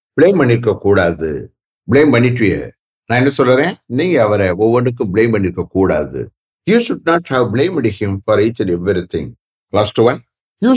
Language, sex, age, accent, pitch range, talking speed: English, male, 60-79, Indian, 105-140 Hz, 145 wpm